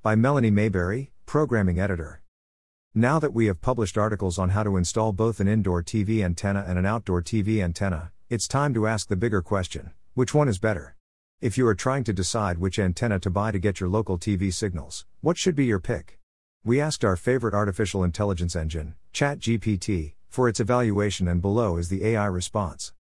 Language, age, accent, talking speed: English, 50-69, American, 190 wpm